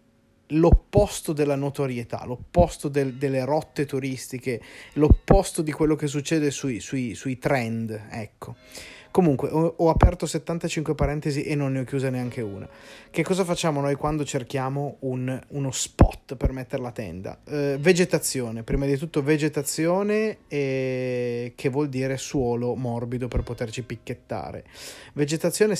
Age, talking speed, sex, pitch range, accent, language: 30-49, 130 wpm, male, 120-145 Hz, native, Italian